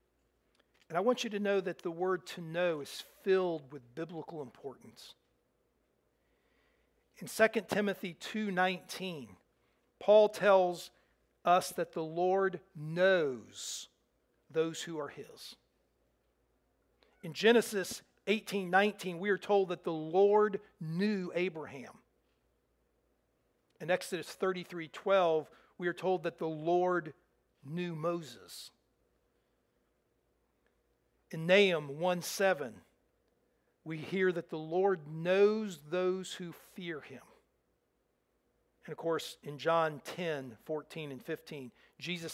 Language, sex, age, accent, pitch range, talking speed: English, male, 50-69, American, 160-195 Hz, 105 wpm